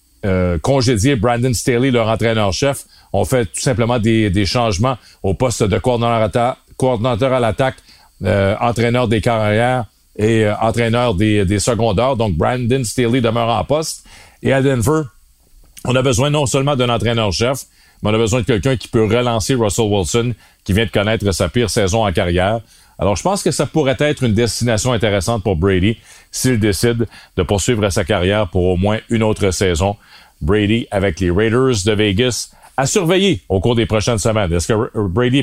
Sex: male